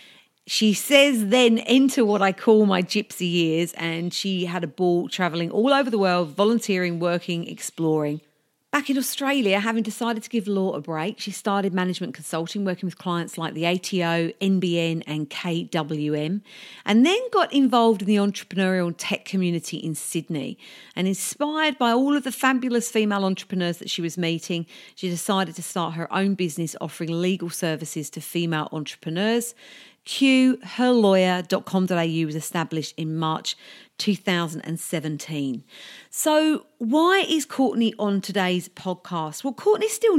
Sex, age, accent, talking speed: female, 40-59, British, 150 wpm